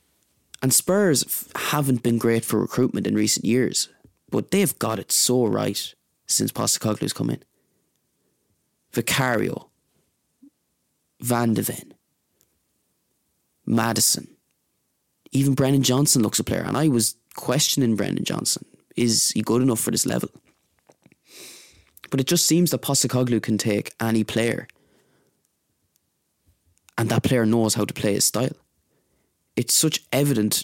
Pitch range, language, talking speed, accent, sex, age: 105-135 Hz, English, 130 wpm, Irish, male, 20-39